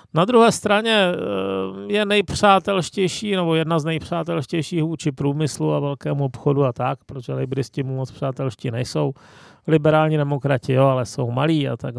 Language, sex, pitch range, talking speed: Czech, male, 130-165 Hz, 150 wpm